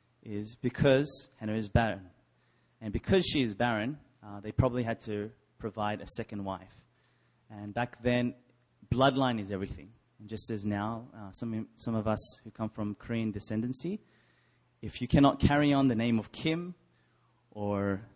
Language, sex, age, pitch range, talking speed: English, male, 20-39, 105-130 Hz, 160 wpm